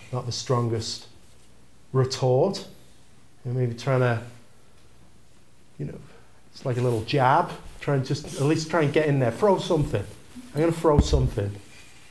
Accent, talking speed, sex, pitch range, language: British, 155 wpm, male, 110-135 Hz, English